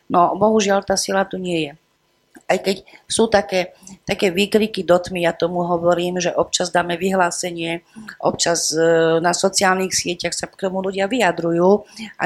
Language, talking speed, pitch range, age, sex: Slovak, 155 wpm, 170-195 Hz, 40-59, female